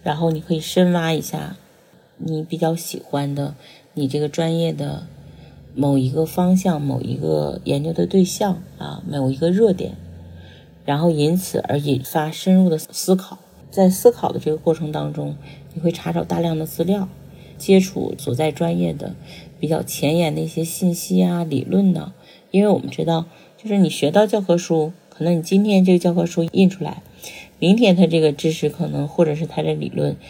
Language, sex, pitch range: Chinese, female, 150-185 Hz